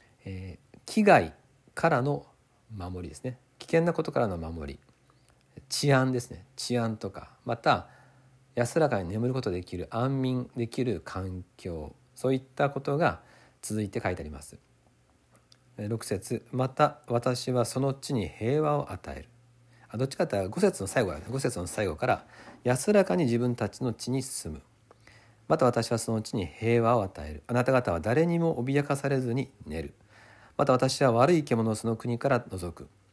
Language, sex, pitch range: Japanese, male, 95-130 Hz